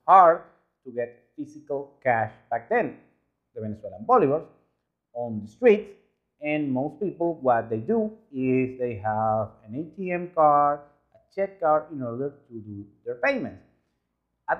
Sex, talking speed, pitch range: male, 145 wpm, 115-155 Hz